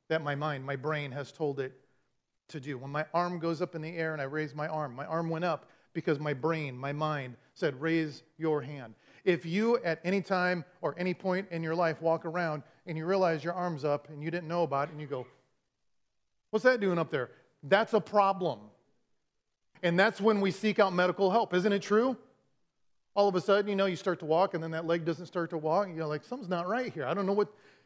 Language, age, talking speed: English, 40-59, 240 wpm